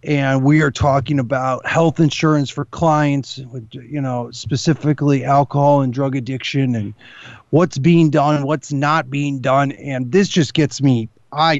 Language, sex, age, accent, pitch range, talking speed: English, male, 30-49, American, 135-170 Hz, 165 wpm